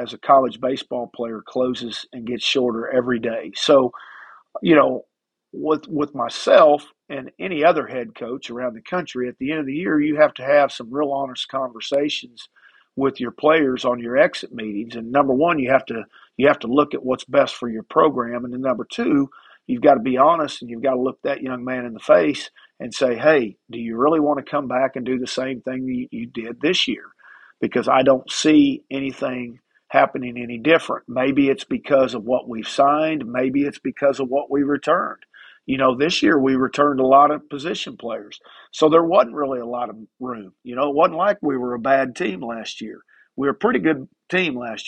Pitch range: 125-150 Hz